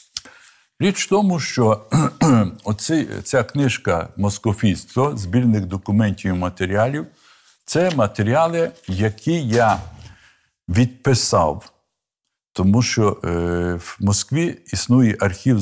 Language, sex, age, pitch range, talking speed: Ukrainian, male, 60-79, 95-125 Hz, 95 wpm